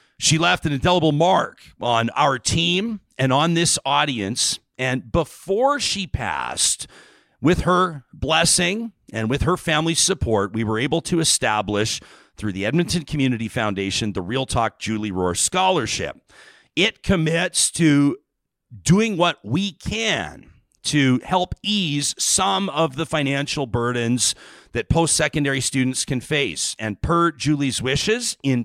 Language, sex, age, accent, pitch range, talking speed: English, male, 40-59, American, 120-170 Hz, 140 wpm